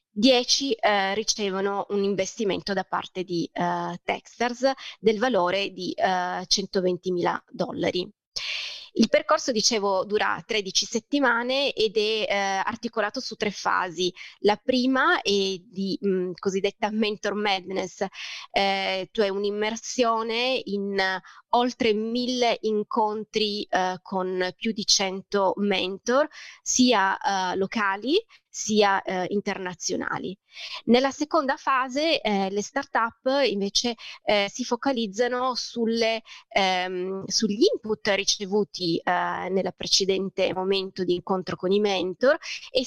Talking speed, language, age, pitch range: 115 wpm, Italian, 20-39, 190-240 Hz